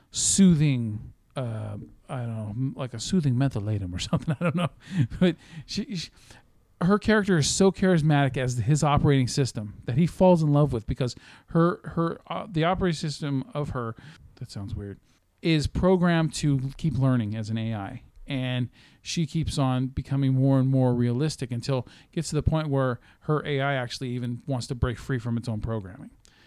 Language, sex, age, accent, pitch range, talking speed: English, male, 40-59, American, 120-155 Hz, 180 wpm